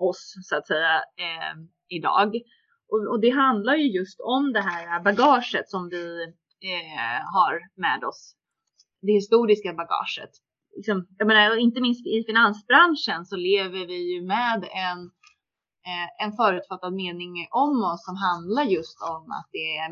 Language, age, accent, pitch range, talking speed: Swedish, 20-39, native, 175-245 Hz, 155 wpm